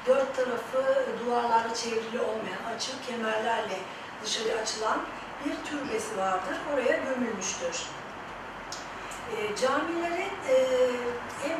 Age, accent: 40-59, native